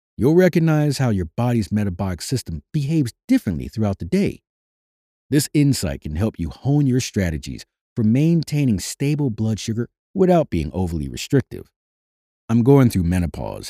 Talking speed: 145 wpm